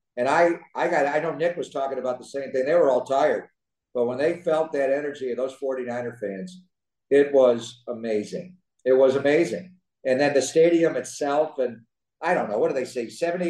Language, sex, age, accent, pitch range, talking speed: English, male, 50-69, American, 140-185 Hz, 220 wpm